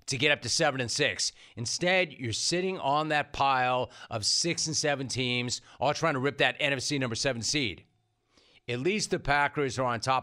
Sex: male